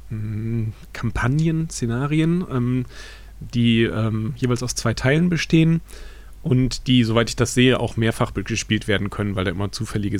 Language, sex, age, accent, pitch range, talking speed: German, male, 40-59, German, 105-130 Hz, 145 wpm